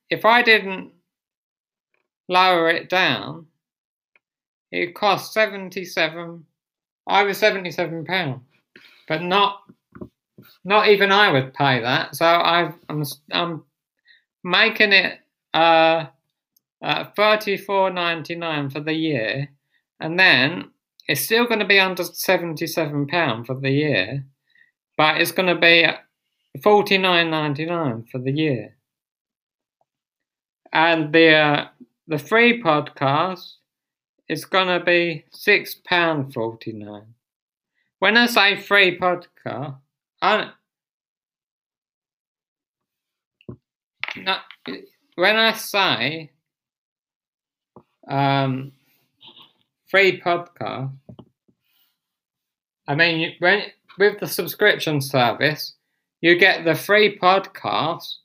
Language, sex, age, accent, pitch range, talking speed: English, male, 50-69, British, 140-190 Hz, 95 wpm